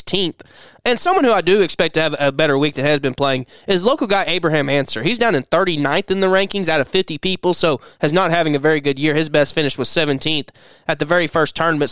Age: 20-39